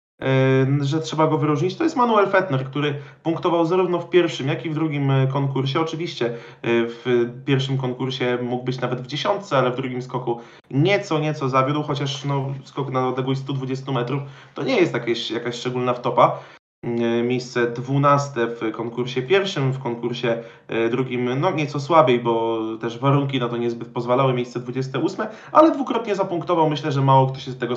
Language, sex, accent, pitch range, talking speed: Polish, male, native, 125-160 Hz, 170 wpm